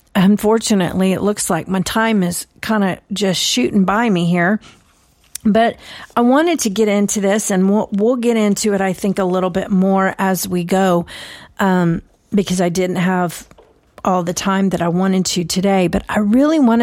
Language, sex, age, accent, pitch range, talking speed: English, female, 40-59, American, 185-220 Hz, 190 wpm